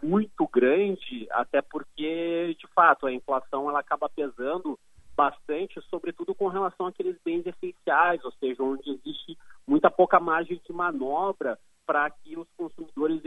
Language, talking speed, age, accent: Portuguese, 135 wpm, 40-59, Brazilian